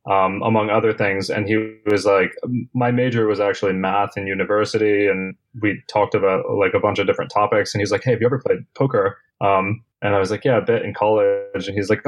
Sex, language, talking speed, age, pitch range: male, English, 235 wpm, 20-39, 105-120 Hz